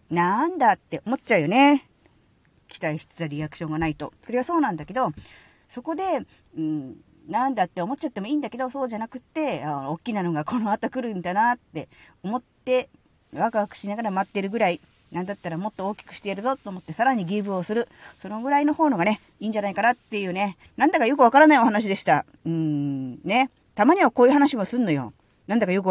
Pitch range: 165-260 Hz